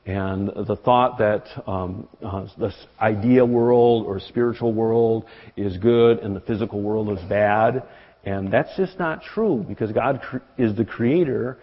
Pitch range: 105-130 Hz